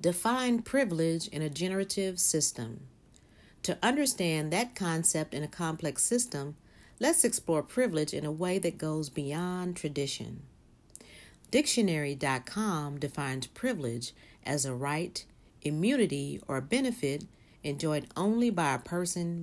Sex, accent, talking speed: female, American, 115 wpm